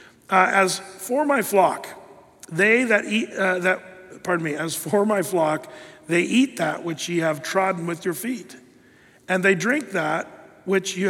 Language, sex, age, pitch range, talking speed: English, male, 50-69, 160-195 Hz, 175 wpm